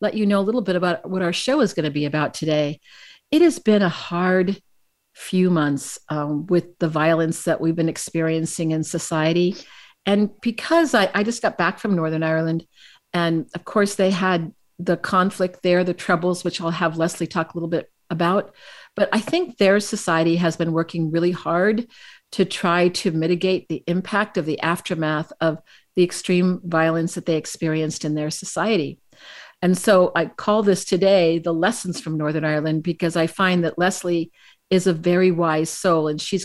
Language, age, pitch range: English, 50-69, 165-195 Hz